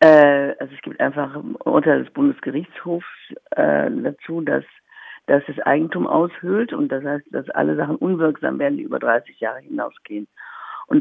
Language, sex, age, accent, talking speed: German, female, 50-69, German, 160 wpm